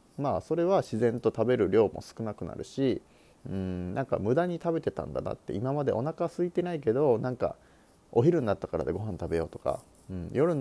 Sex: male